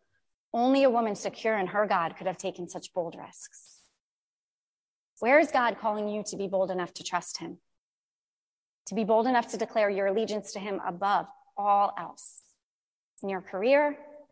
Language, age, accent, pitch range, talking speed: English, 30-49, American, 200-270 Hz, 170 wpm